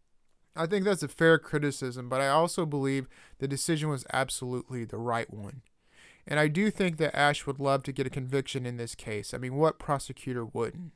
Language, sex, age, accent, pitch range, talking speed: English, male, 30-49, American, 130-160 Hz, 205 wpm